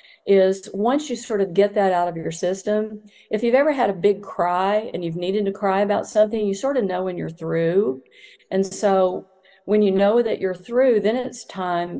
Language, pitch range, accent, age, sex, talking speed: English, 175-210 Hz, American, 50-69, female, 215 wpm